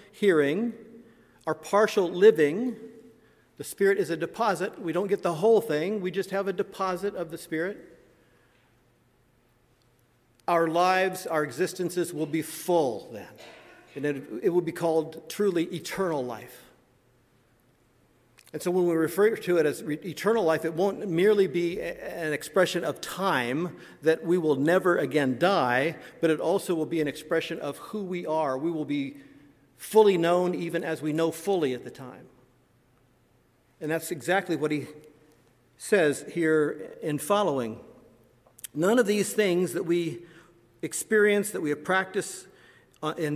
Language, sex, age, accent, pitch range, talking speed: English, male, 50-69, American, 150-190 Hz, 150 wpm